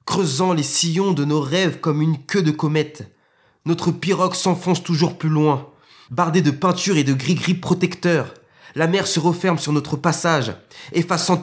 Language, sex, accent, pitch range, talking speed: French, male, French, 125-175 Hz, 170 wpm